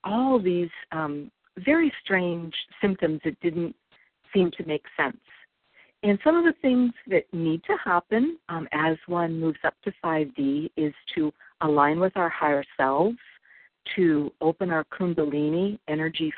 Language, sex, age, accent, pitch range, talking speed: English, female, 50-69, American, 150-200 Hz, 145 wpm